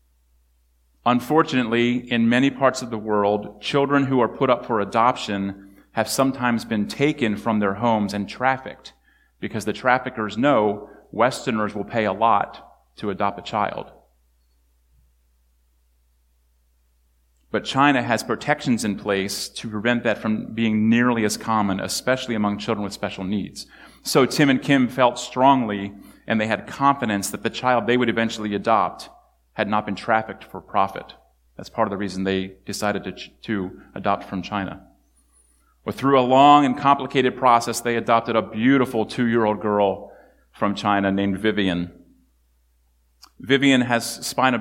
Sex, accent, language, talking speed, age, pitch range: male, American, English, 150 wpm, 30-49, 95-120 Hz